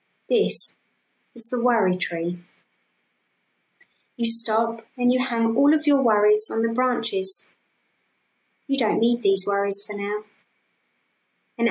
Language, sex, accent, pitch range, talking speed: English, female, British, 200-235 Hz, 130 wpm